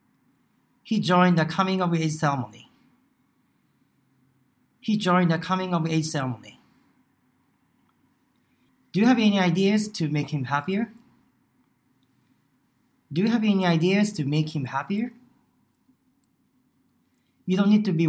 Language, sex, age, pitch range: Japanese, male, 40-59, 145-245 Hz